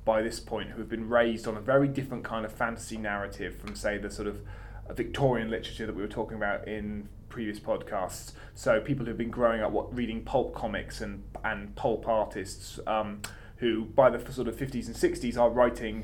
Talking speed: 210 wpm